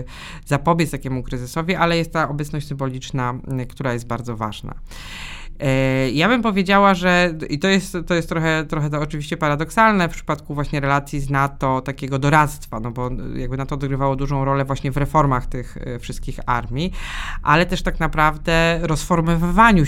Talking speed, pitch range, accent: 160 wpm, 130-155 Hz, native